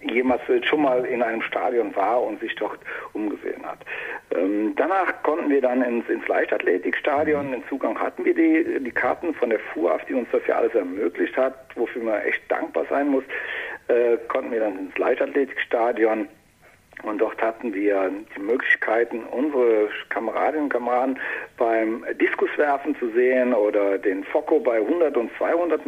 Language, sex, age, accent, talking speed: German, male, 60-79, German, 165 wpm